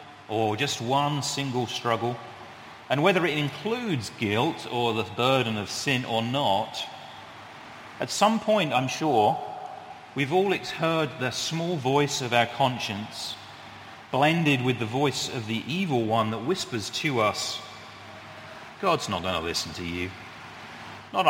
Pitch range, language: 110-145 Hz, English